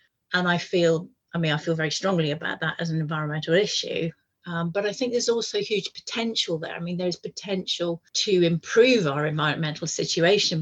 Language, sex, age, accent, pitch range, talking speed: English, female, 40-59, British, 165-190 Hz, 185 wpm